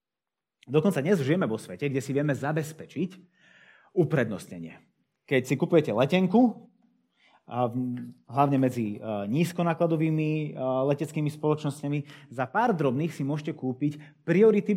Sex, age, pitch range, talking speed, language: male, 30-49, 115-160 Hz, 105 wpm, Slovak